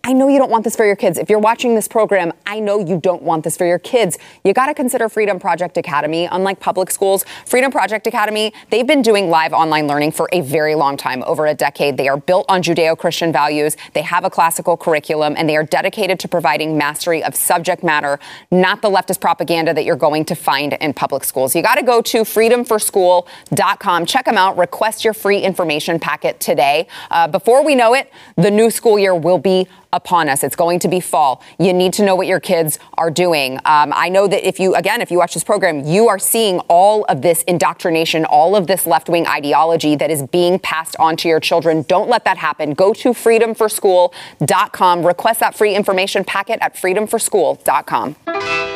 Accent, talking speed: American, 210 wpm